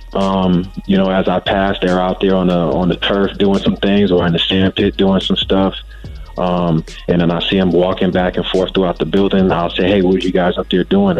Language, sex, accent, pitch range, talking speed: English, male, American, 90-100 Hz, 255 wpm